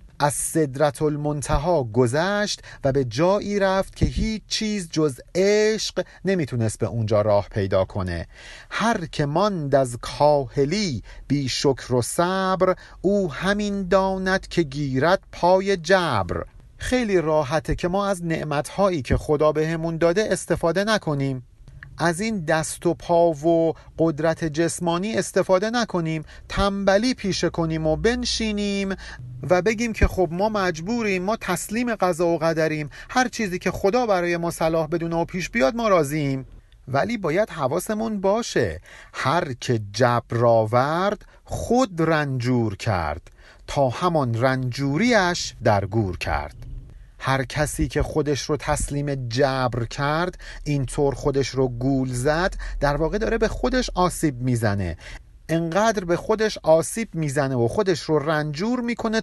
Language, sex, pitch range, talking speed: Persian, male, 135-190 Hz, 135 wpm